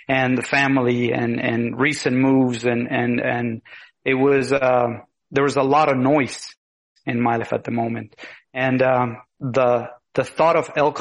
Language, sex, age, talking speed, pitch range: English, male, 30-49, 175 wpm, 125-150 Hz